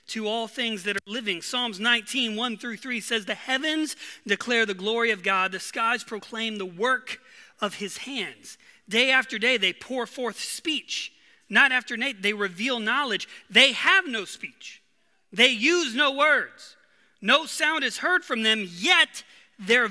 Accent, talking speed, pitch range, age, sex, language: American, 165 wpm, 220-285 Hz, 30-49, male, English